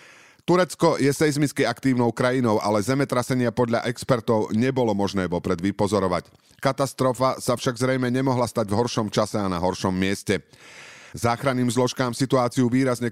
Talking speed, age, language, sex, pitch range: 135 wpm, 30-49, Slovak, male, 105-130 Hz